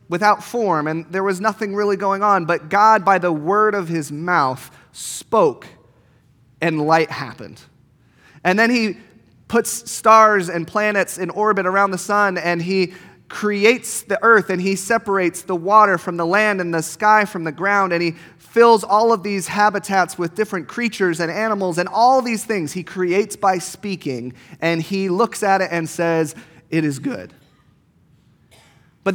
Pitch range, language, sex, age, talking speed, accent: 160-205 Hz, English, male, 30-49, 170 wpm, American